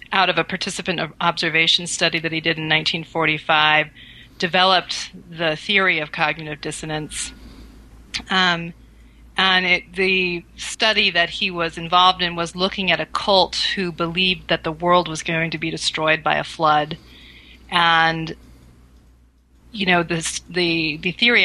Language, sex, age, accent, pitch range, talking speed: English, female, 30-49, American, 160-185 Hz, 140 wpm